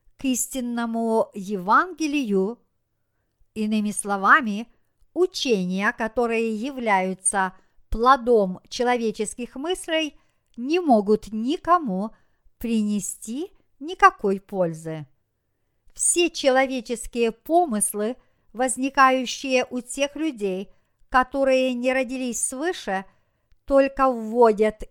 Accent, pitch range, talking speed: native, 205-275 Hz, 70 wpm